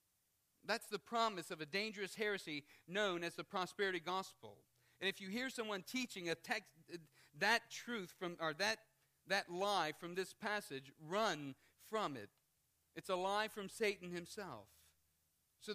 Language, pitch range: English, 130-190 Hz